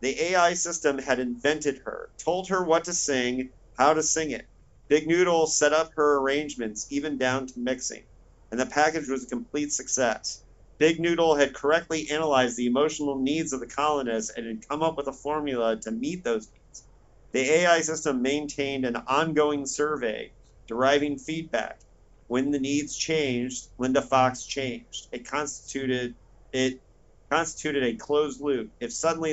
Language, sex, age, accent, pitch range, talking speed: English, male, 40-59, American, 125-150 Hz, 160 wpm